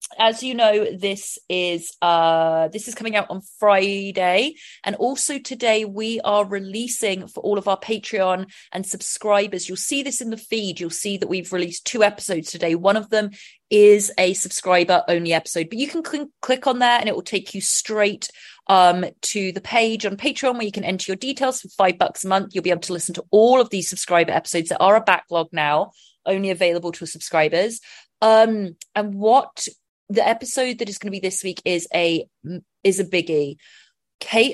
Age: 30-49